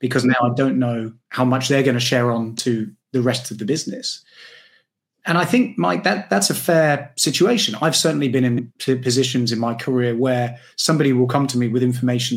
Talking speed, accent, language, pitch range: 210 wpm, British, English, 120-140 Hz